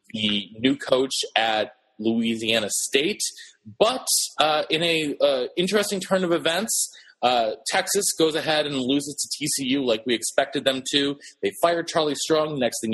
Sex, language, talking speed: male, English, 155 wpm